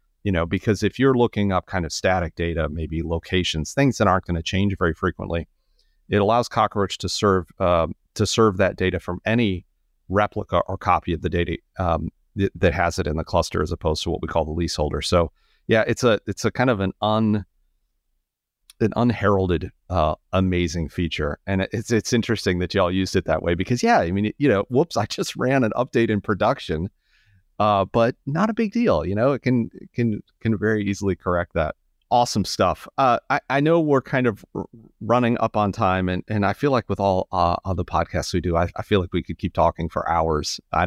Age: 30-49